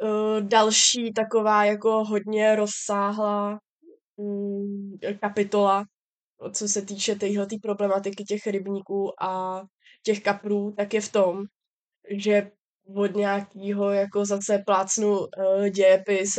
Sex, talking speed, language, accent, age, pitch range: female, 100 wpm, Czech, native, 20-39, 180-205 Hz